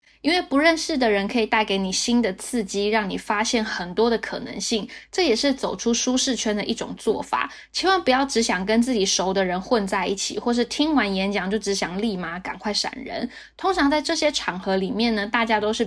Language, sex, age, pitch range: Chinese, female, 10-29, 200-250 Hz